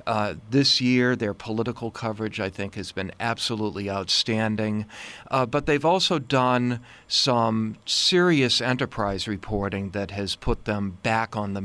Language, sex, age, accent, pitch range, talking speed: English, male, 40-59, American, 105-135 Hz, 145 wpm